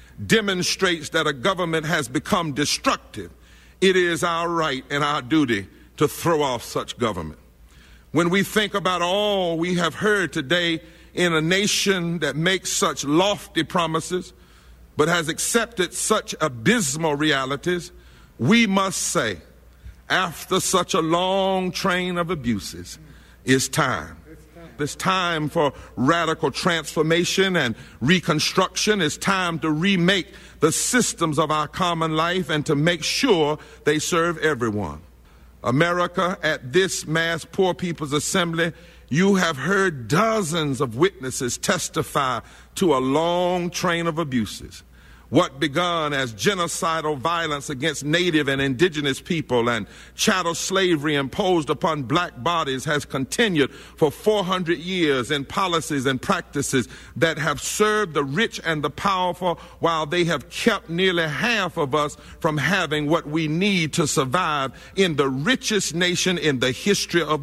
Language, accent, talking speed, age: English, American, 140 wpm, 50-69